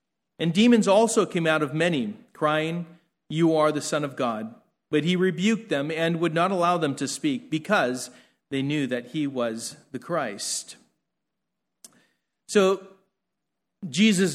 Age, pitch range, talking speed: 40-59, 165-200 Hz, 145 wpm